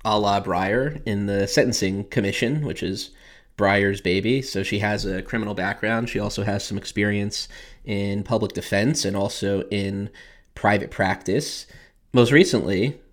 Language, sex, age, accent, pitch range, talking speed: English, male, 20-39, American, 100-110 Hz, 145 wpm